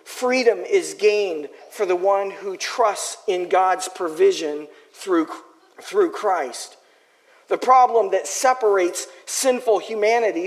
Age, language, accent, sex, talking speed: 40-59, English, American, male, 115 wpm